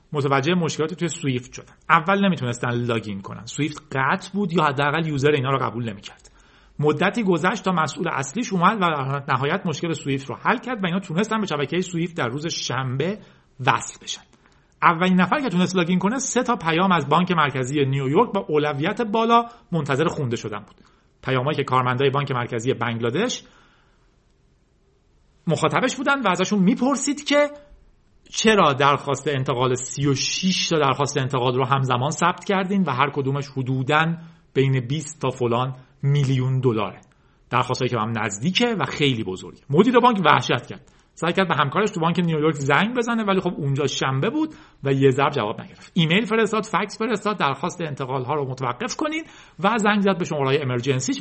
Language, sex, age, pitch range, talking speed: Persian, male, 40-59, 135-185 Hz, 165 wpm